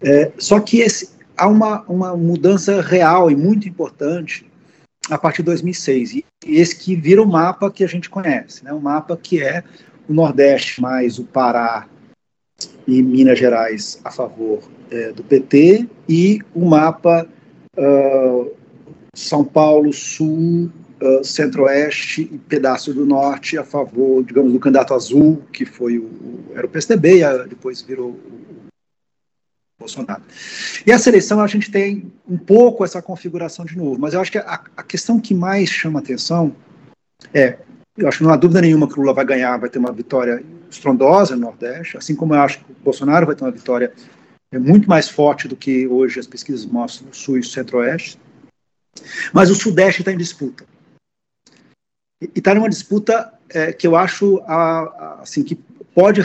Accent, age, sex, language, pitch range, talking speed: Brazilian, 50-69, male, Portuguese, 135-185 Hz, 175 wpm